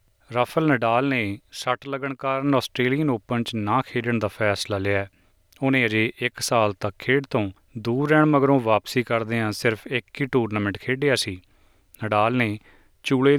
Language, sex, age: Punjabi, male, 30-49